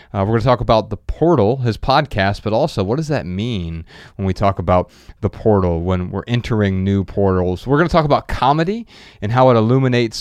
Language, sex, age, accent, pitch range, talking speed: English, male, 30-49, American, 105-140 Hz, 215 wpm